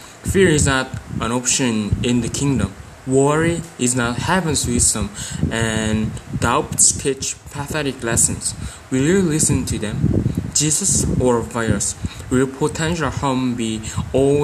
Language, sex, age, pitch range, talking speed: English, male, 20-39, 115-140 Hz, 130 wpm